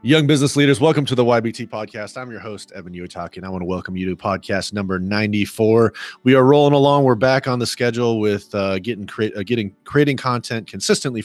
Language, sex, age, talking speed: English, male, 30-49, 220 wpm